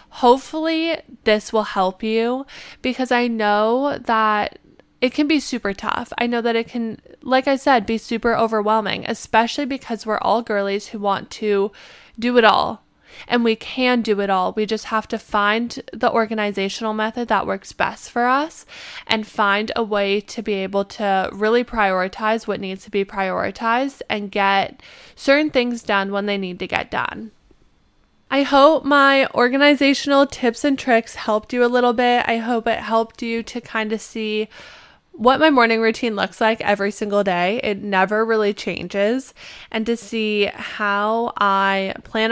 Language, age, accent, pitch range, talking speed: English, 20-39, American, 205-245 Hz, 170 wpm